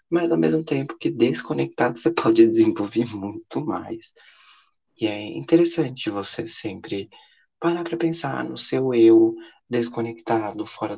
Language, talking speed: Portuguese, 130 wpm